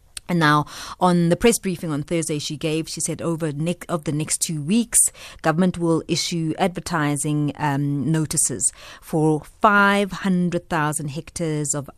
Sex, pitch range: female, 150-190 Hz